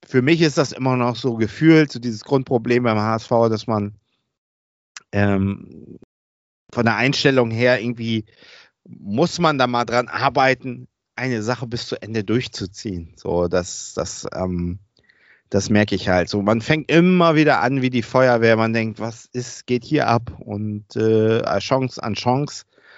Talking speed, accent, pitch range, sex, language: 160 wpm, German, 105-125 Hz, male, German